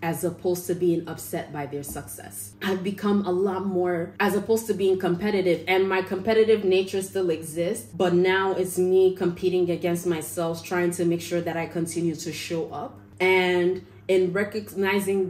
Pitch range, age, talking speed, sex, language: 160-185 Hz, 20-39, 175 wpm, female, English